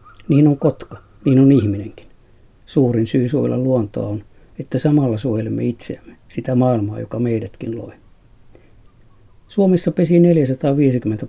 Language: Finnish